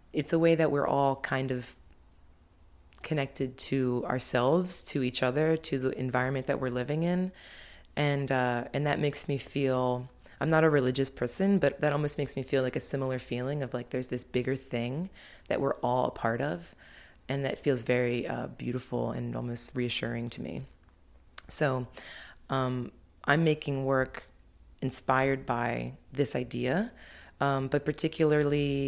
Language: English